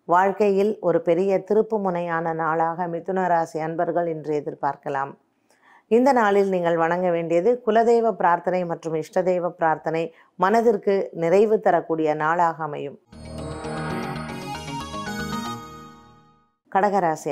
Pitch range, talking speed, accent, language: 165-200 Hz, 95 wpm, native, Tamil